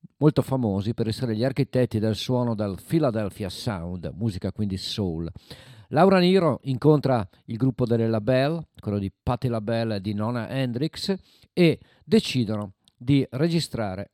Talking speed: 140 wpm